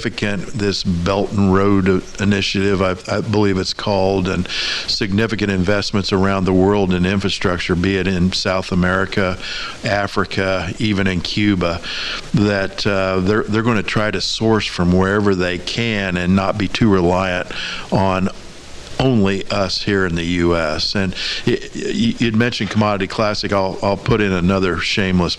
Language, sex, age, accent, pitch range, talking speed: English, male, 50-69, American, 90-100 Hz, 145 wpm